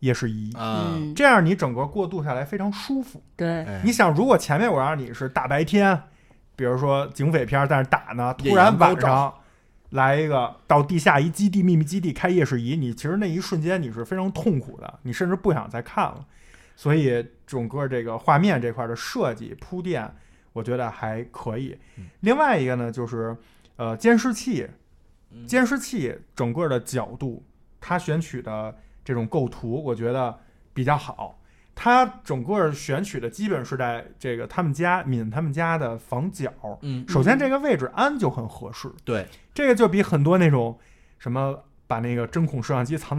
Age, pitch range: 20-39, 125-185 Hz